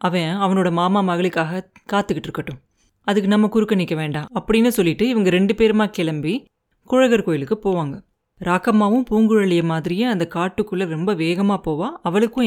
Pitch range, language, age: 170-220 Hz, Tamil, 30-49